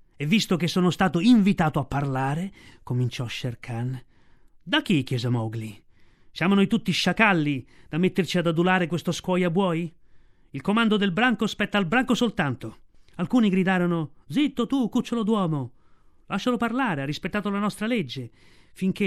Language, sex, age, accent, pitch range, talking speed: Italian, male, 30-49, native, 135-190 Hz, 150 wpm